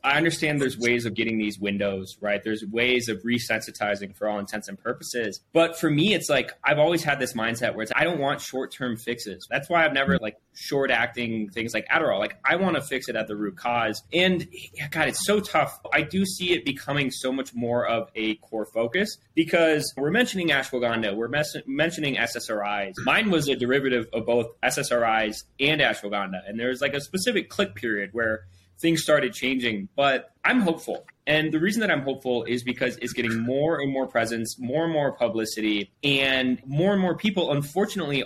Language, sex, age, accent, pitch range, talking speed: English, male, 20-39, American, 115-150 Hz, 200 wpm